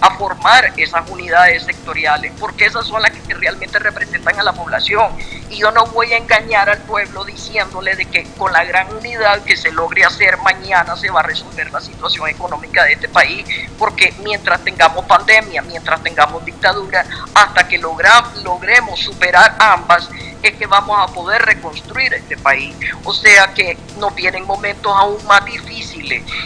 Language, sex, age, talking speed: Spanish, female, 50-69, 170 wpm